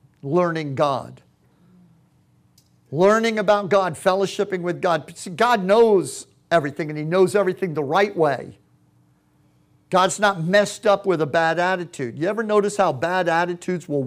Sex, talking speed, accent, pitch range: male, 145 wpm, American, 165-225 Hz